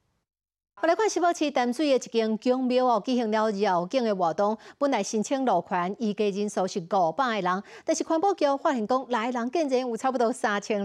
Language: Chinese